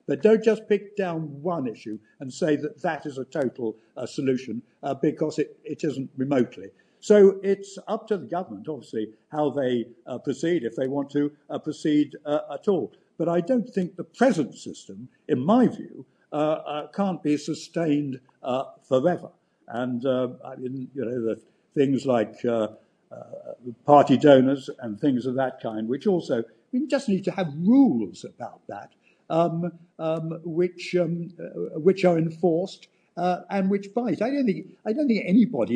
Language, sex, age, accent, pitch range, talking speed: English, male, 60-79, British, 140-200 Hz, 175 wpm